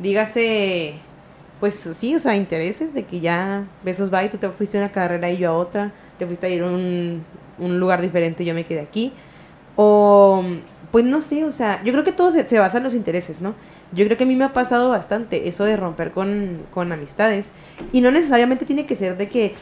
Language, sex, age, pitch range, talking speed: Spanish, female, 20-39, 180-230 Hz, 225 wpm